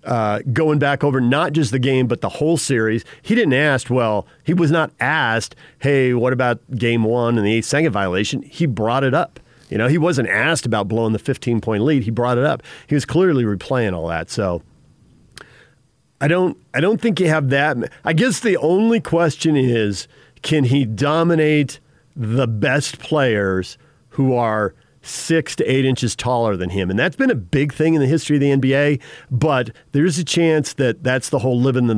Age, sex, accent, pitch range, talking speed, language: 40-59, male, American, 115-150 Hz, 195 wpm, English